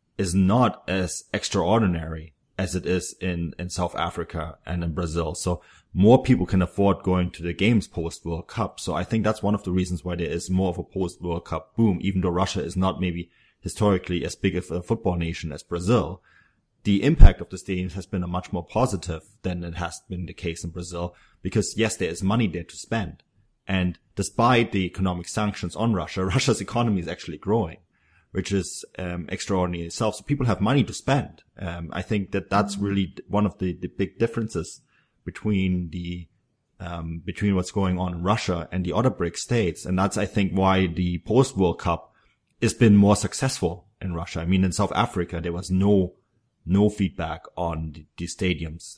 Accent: German